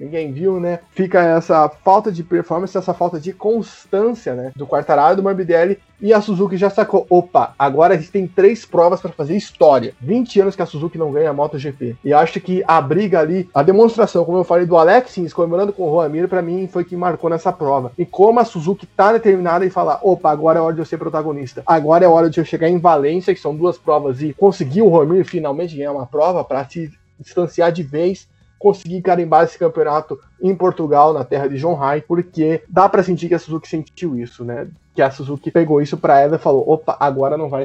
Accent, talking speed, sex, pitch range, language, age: Brazilian, 225 wpm, male, 160-200 Hz, Portuguese, 20-39